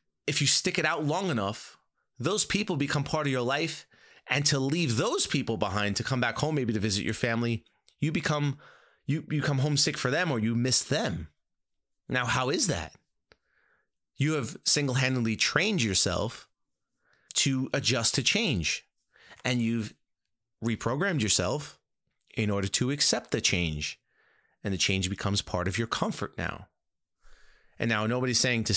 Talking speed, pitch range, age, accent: 165 wpm, 110-145 Hz, 30-49, American